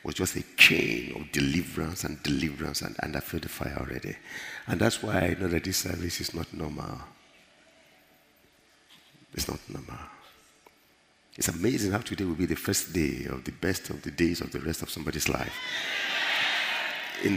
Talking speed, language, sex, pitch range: 175 wpm, English, male, 80-110 Hz